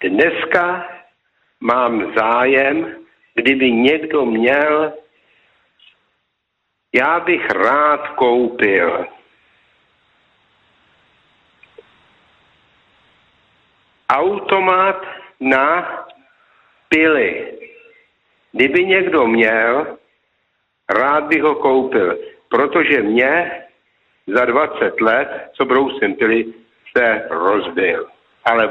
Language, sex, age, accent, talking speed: Czech, male, 60-79, native, 65 wpm